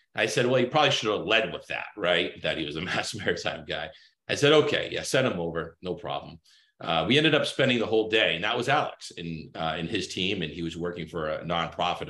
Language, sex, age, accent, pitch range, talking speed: English, male, 40-59, American, 80-105 Hz, 255 wpm